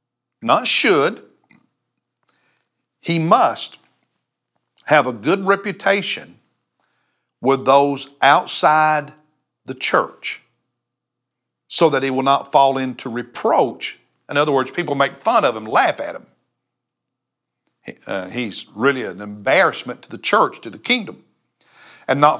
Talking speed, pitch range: 125 wpm, 140-190 Hz